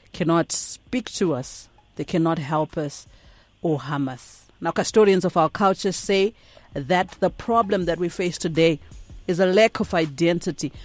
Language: English